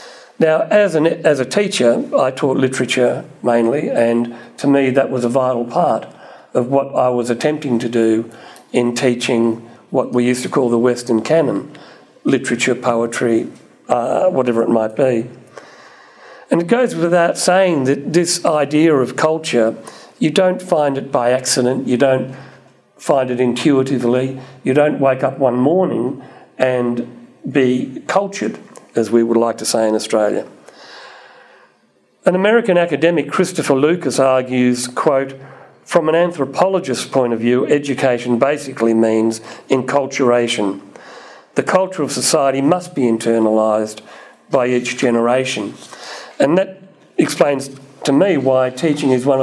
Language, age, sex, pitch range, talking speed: English, 50-69, male, 120-145 Hz, 140 wpm